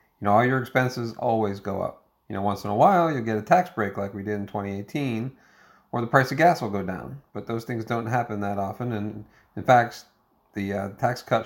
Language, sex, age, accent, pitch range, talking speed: English, male, 40-59, American, 105-125 Hz, 240 wpm